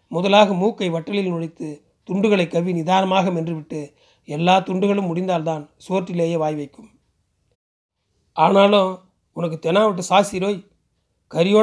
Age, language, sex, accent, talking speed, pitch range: 40-59, Tamil, male, native, 105 wpm, 165-195 Hz